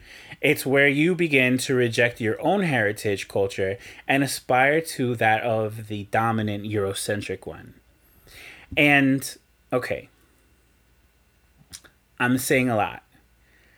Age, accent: 30-49, American